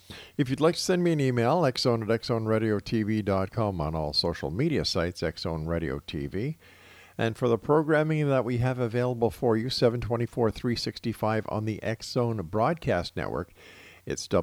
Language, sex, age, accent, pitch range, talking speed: English, male, 50-69, American, 90-120 Hz, 150 wpm